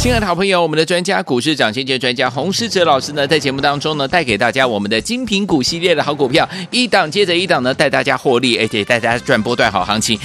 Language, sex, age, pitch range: Chinese, male, 30-49, 130-190 Hz